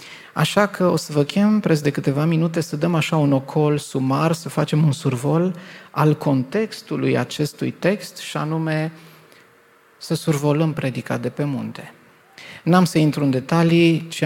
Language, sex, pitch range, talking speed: Romanian, male, 140-170 Hz, 160 wpm